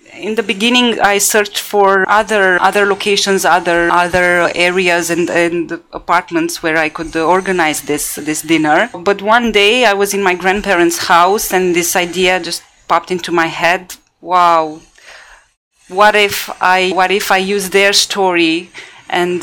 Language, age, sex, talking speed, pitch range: English, 20-39, female, 155 wpm, 175-205 Hz